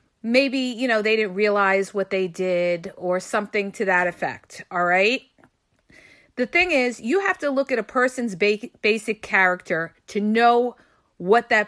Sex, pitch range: female, 215-295 Hz